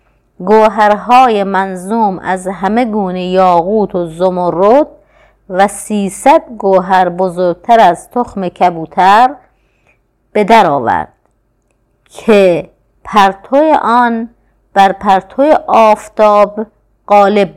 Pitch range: 180-225 Hz